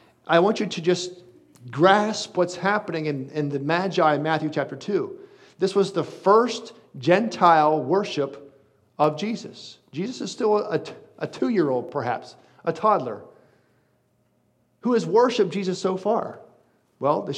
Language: English